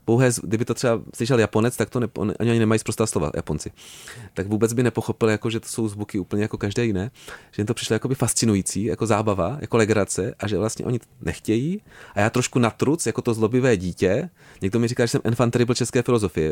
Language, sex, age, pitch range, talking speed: Czech, male, 30-49, 100-120 Hz, 220 wpm